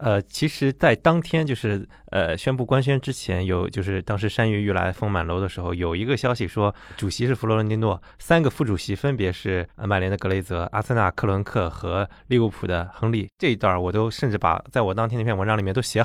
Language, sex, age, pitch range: Chinese, male, 20-39, 95-120 Hz